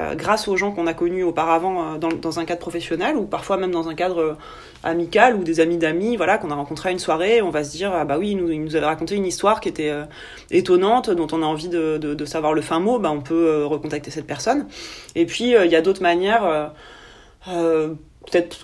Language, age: French, 30-49